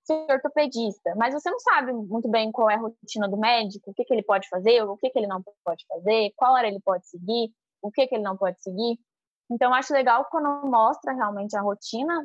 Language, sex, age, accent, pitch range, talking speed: Portuguese, female, 10-29, Brazilian, 210-260 Hz, 235 wpm